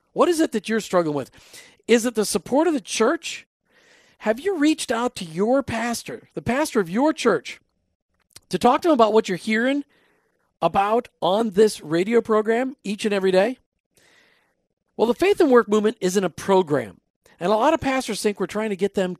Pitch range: 185-245 Hz